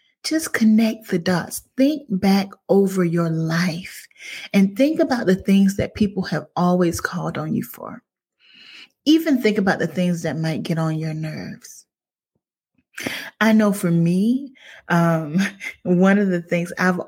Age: 30-49